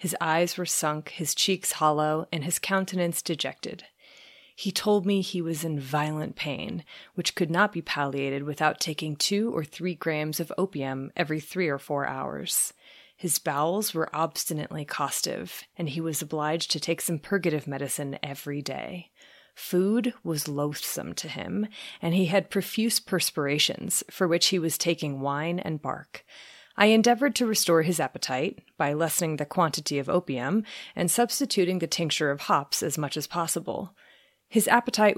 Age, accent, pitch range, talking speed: 30-49, American, 150-195 Hz, 160 wpm